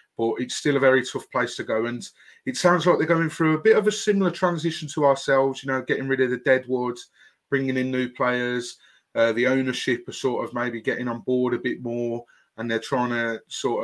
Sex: male